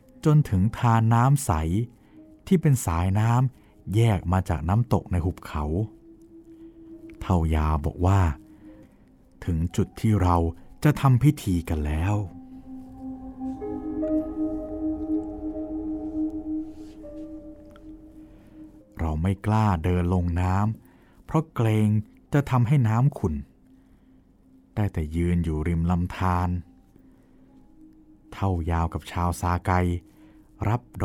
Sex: male